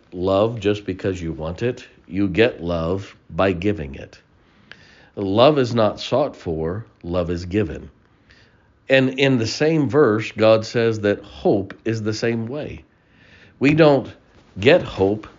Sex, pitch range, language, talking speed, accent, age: male, 100-130 Hz, English, 145 wpm, American, 50-69